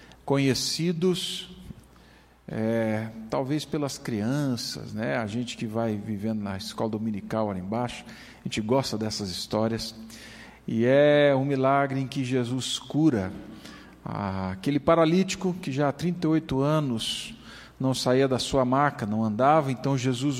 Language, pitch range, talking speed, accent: Portuguese, 115-175 Hz, 130 wpm, Brazilian